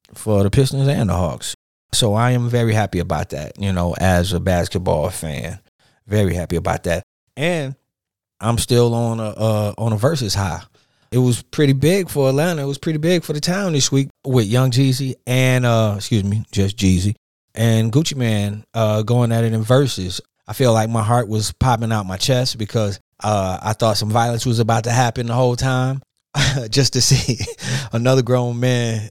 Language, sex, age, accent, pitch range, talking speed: English, male, 30-49, American, 100-125 Hz, 195 wpm